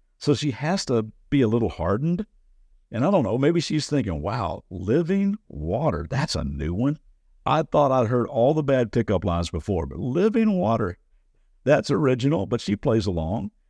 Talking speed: 180 wpm